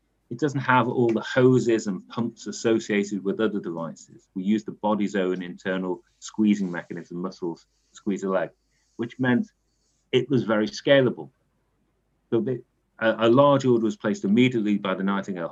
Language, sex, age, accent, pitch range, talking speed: English, male, 40-59, British, 95-125 Hz, 160 wpm